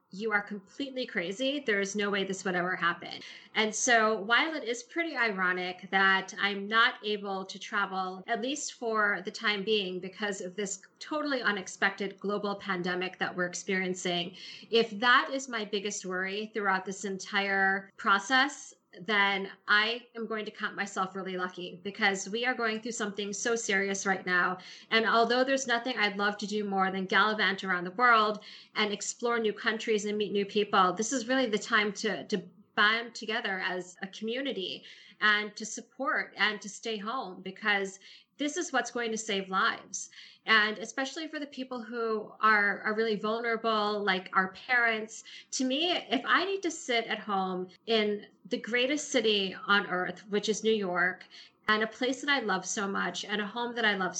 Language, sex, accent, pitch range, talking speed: English, female, American, 195-230 Hz, 185 wpm